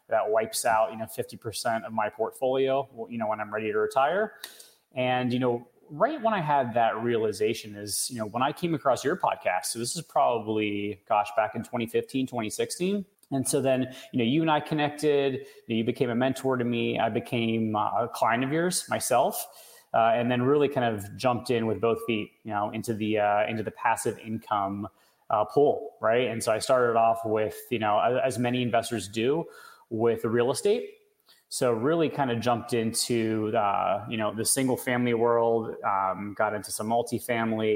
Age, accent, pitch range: 30-49, American, 110-135 Hz